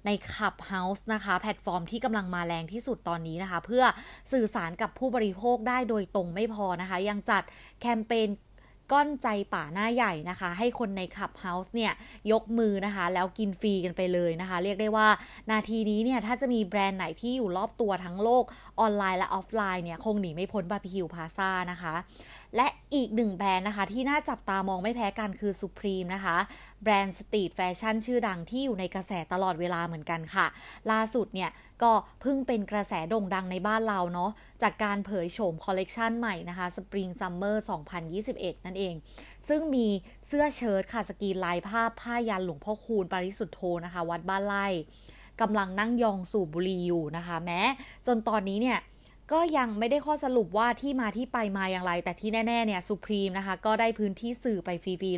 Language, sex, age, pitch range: Thai, female, 30-49, 185-230 Hz